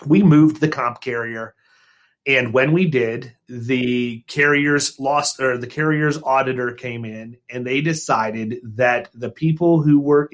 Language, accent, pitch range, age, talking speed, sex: English, American, 125-160 Hz, 30-49, 150 wpm, male